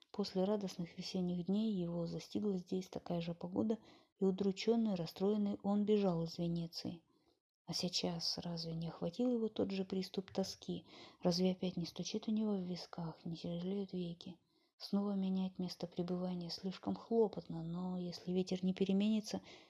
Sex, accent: female, native